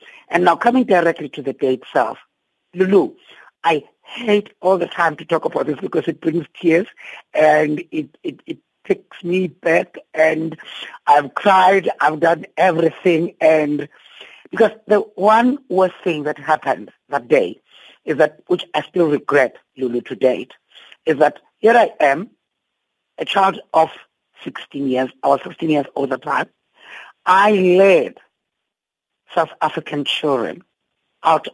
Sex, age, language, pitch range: female, 50-69, English, 155-205 Hz